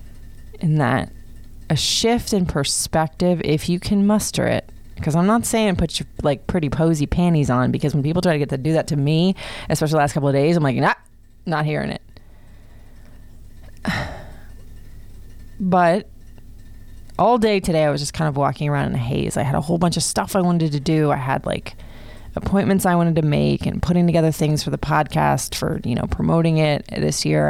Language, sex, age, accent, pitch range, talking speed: English, female, 20-39, American, 120-165 Hz, 205 wpm